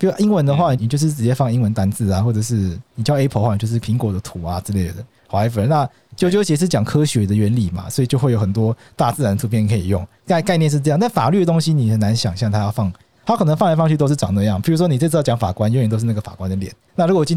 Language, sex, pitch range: Chinese, male, 110-150 Hz